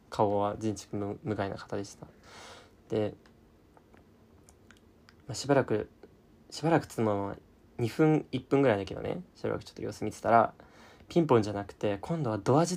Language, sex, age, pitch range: Japanese, male, 20-39, 100-130 Hz